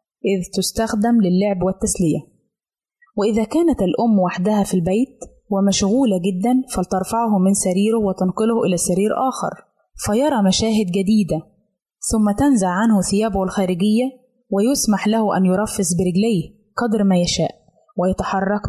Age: 20-39